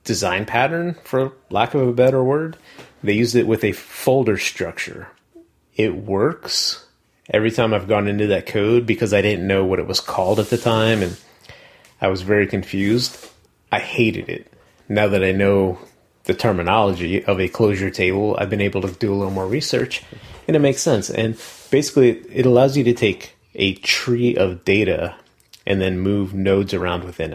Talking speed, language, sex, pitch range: 180 wpm, English, male, 95-120 Hz